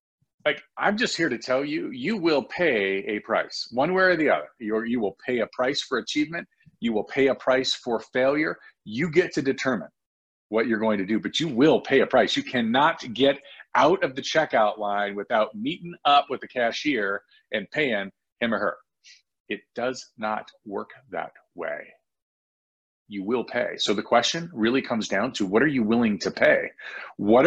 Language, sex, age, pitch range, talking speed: English, male, 40-59, 105-165 Hz, 190 wpm